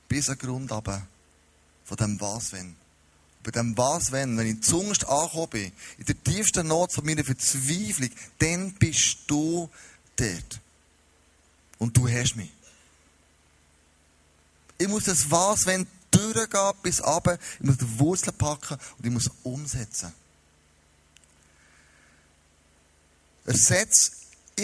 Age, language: 30-49, German